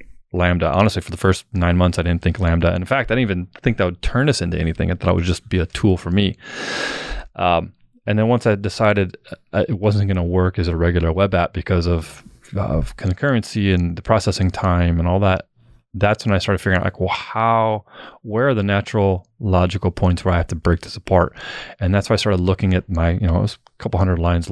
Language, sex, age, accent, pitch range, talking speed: English, male, 20-39, American, 90-105 Hz, 240 wpm